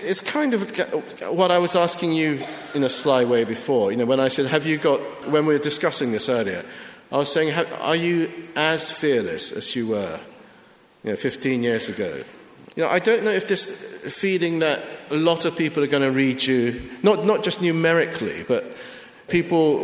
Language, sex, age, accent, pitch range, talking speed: English, male, 50-69, British, 135-165 Hz, 200 wpm